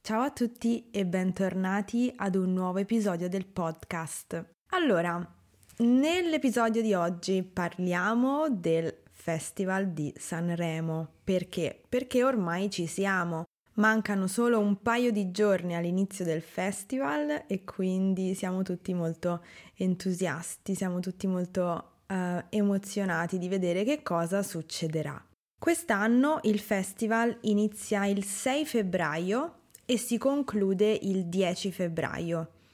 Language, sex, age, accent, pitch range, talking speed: Italian, female, 20-39, native, 175-215 Hz, 115 wpm